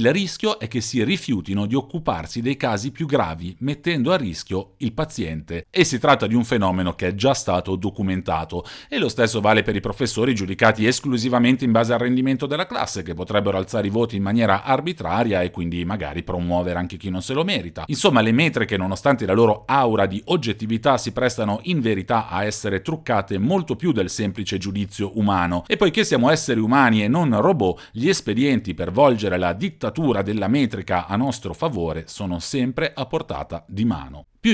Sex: male